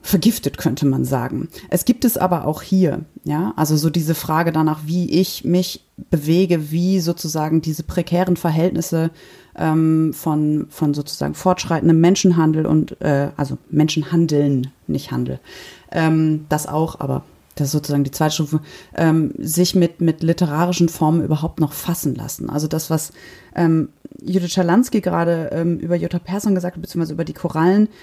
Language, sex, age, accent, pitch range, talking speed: German, female, 30-49, German, 155-185 Hz, 160 wpm